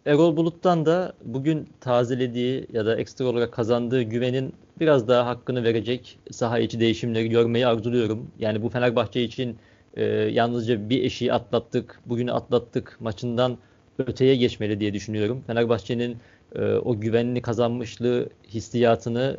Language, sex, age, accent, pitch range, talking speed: Turkish, male, 40-59, native, 115-135 Hz, 130 wpm